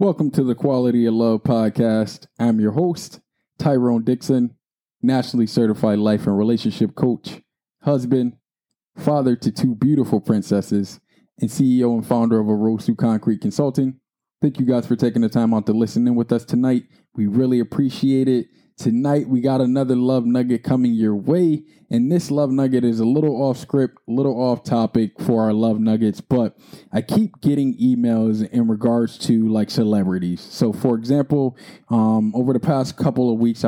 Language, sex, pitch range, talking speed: English, male, 110-130 Hz, 175 wpm